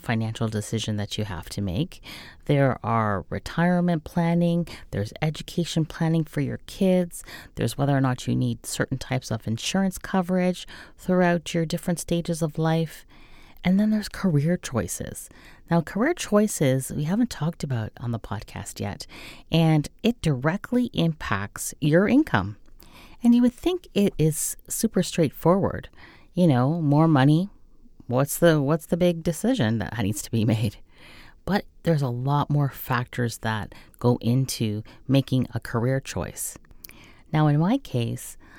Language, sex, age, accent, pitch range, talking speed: English, female, 30-49, American, 120-170 Hz, 150 wpm